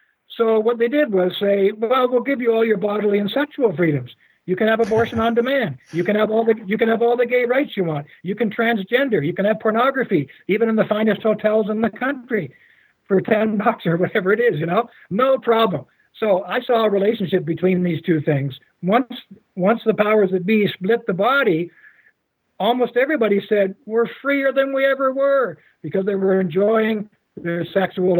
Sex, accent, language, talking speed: male, American, English, 200 wpm